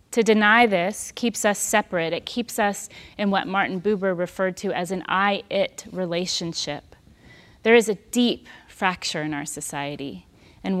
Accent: American